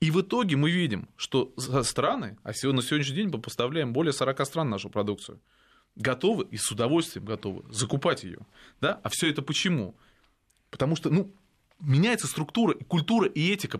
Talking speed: 175 wpm